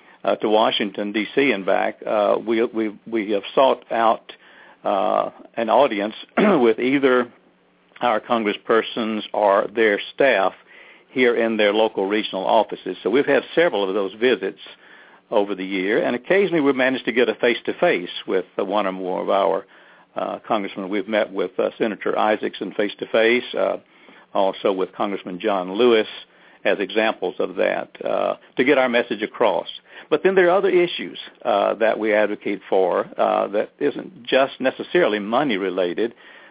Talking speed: 155 wpm